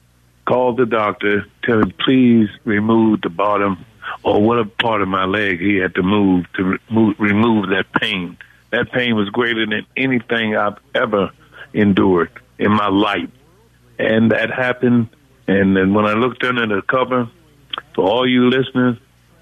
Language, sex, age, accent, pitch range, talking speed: English, male, 60-79, American, 100-120 Hz, 155 wpm